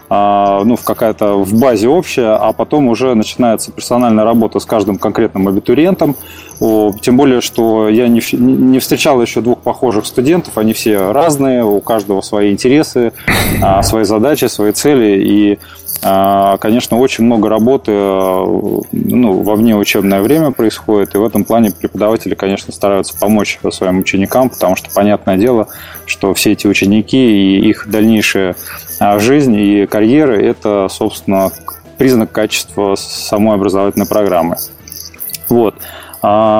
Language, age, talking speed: Russian, 20-39, 130 wpm